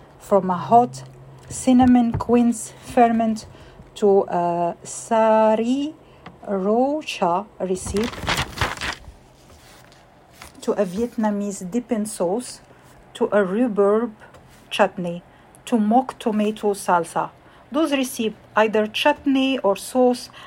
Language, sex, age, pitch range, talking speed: English, female, 50-69, 195-240 Hz, 90 wpm